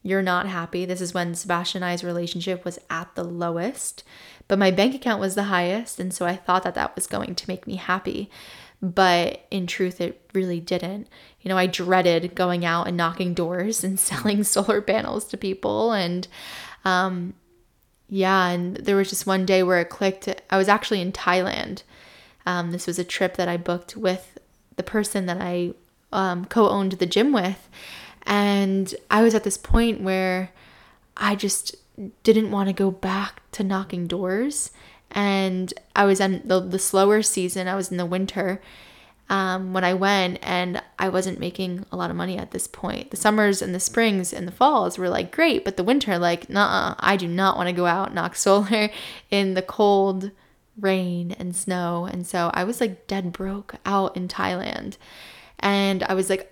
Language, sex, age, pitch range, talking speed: English, female, 10-29, 180-200 Hz, 190 wpm